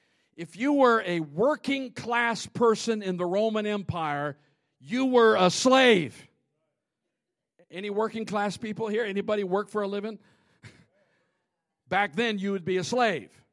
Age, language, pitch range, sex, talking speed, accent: 50-69, English, 165-240 Hz, male, 140 wpm, American